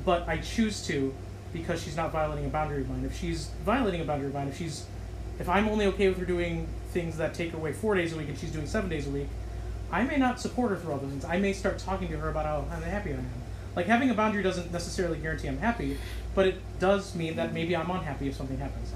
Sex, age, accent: male, 30-49, American